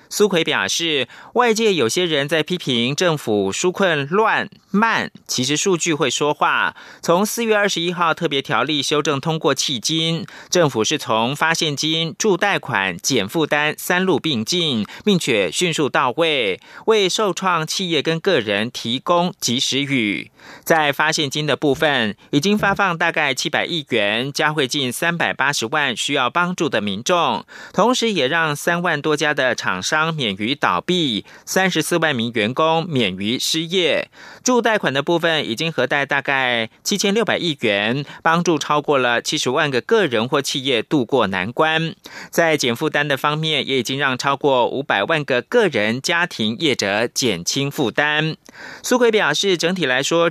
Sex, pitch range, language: male, 140-180 Hz, German